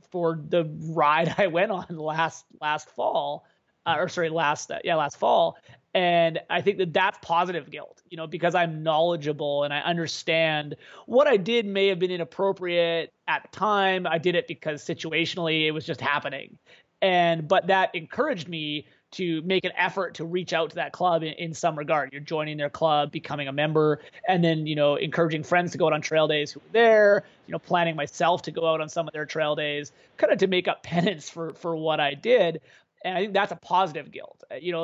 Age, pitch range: 30-49, 155-185 Hz